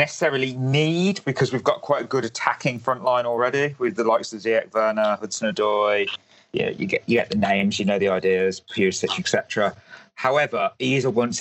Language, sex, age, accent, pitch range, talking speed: English, male, 30-49, British, 105-140 Hz, 195 wpm